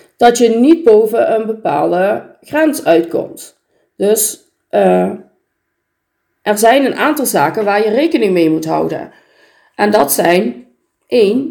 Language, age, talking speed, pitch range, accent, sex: Dutch, 40-59, 130 wpm, 190-280 Hz, Dutch, female